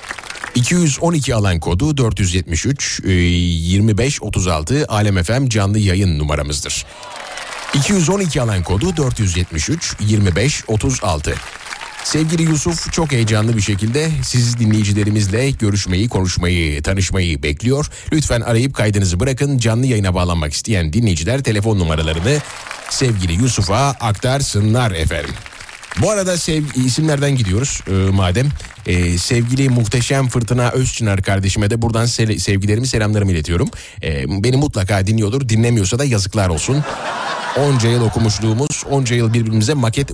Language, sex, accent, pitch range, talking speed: Turkish, male, native, 95-130 Hz, 115 wpm